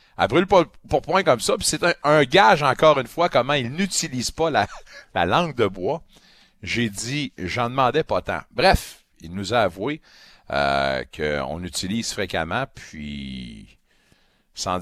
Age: 50-69